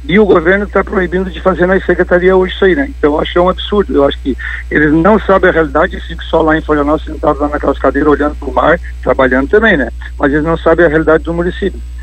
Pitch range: 135-185 Hz